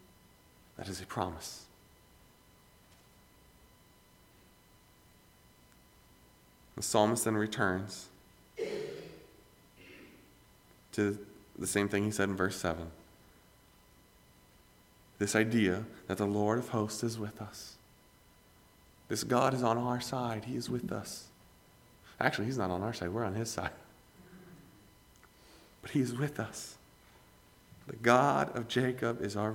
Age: 40-59